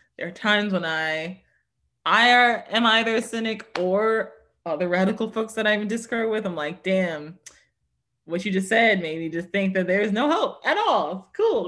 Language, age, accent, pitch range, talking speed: English, 20-39, American, 165-215 Hz, 200 wpm